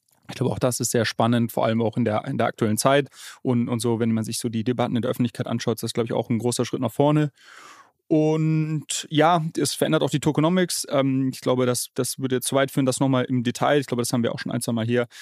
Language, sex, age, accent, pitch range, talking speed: German, male, 30-49, German, 115-135 Hz, 280 wpm